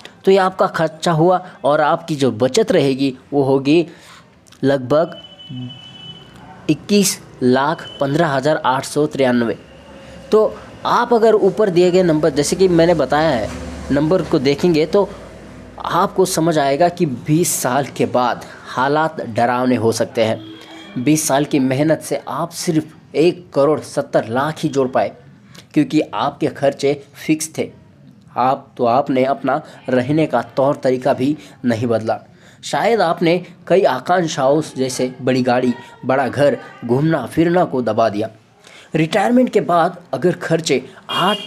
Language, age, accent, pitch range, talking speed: Marathi, 20-39, native, 130-175 Hz, 110 wpm